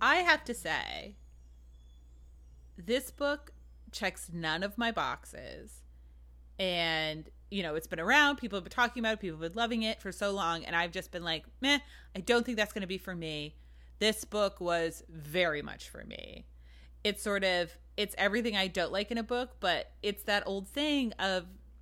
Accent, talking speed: American, 195 wpm